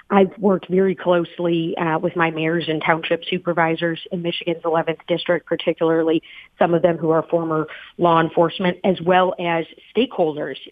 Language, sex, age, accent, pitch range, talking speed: English, female, 40-59, American, 170-200 Hz, 155 wpm